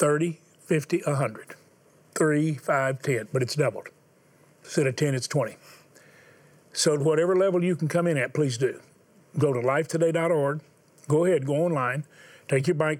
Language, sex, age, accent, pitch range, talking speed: English, male, 40-59, American, 130-165 Hz, 160 wpm